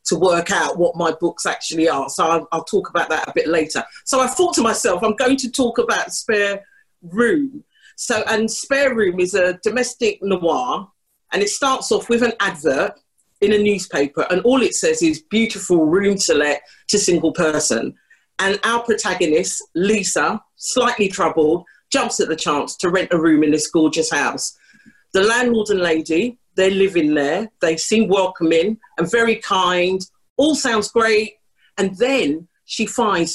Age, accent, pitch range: 40-59, British, 170-240 Hz